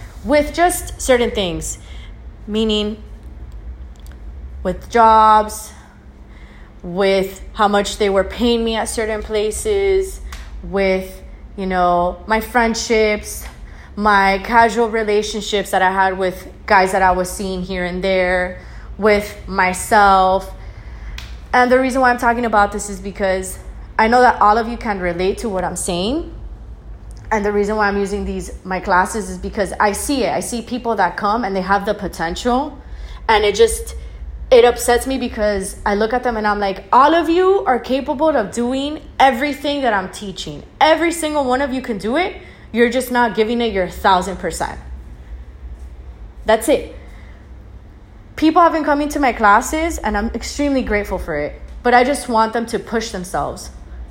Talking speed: 165 wpm